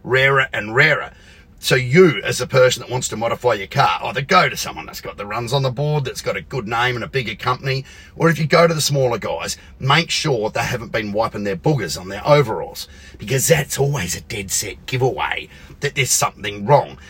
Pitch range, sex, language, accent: 100-140 Hz, male, English, Australian